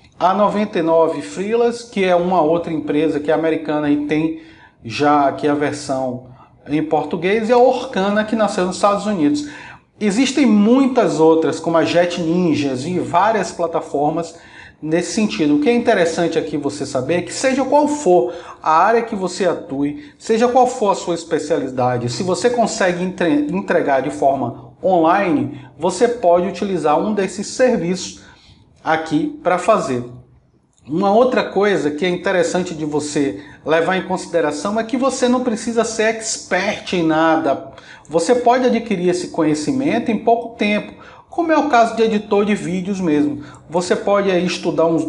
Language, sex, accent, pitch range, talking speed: Portuguese, male, Brazilian, 160-225 Hz, 160 wpm